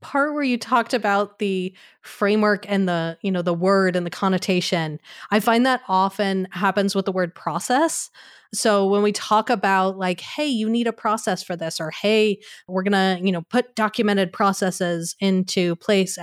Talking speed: 185 wpm